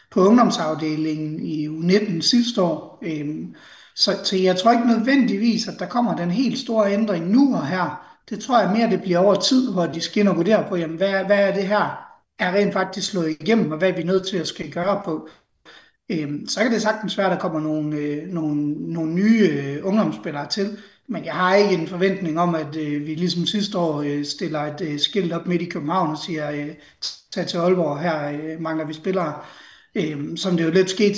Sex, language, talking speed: male, Danish, 200 wpm